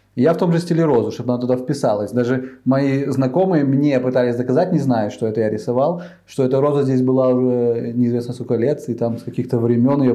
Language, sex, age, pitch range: Russian, male, 20-39, 120-150 Hz